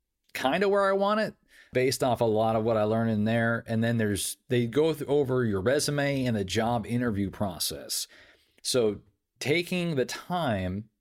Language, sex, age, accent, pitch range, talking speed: English, male, 40-59, American, 110-140 Hz, 185 wpm